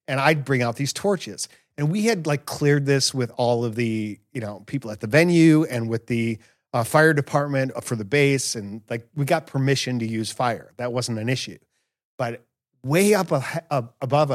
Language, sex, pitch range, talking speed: English, male, 115-145 Hz, 195 wpm